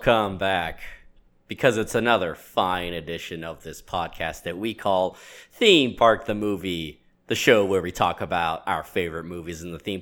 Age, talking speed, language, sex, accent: 30-49, 175 wpm, English, male, American